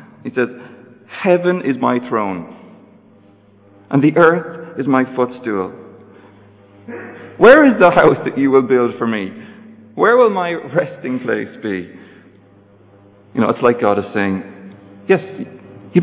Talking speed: 140 wpm